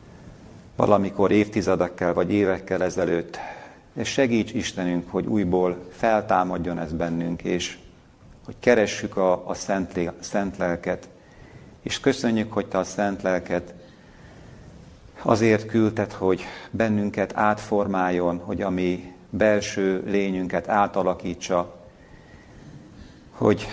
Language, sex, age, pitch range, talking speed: Hungarian, male, 50-69, 85-100 Hz, 100 wpm